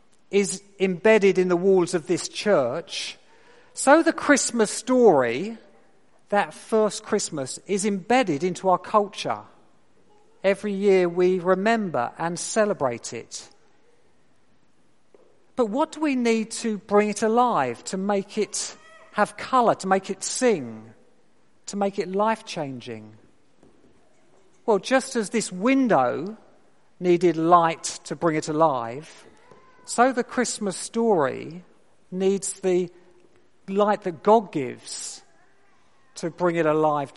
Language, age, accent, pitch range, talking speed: English, 50-69, British, 175-225 Hz, 120 wpm